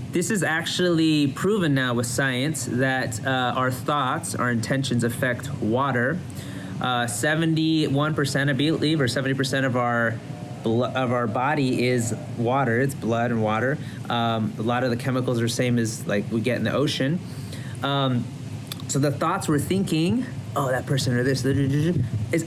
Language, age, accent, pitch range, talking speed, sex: English, 30-49, American, 120-145 Hz, 165 wpm, male